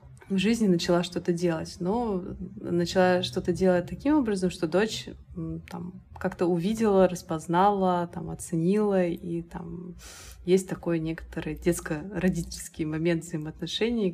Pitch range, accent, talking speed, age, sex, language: 160-185 Hz, native, 115 wpm, 20-39, female, Russian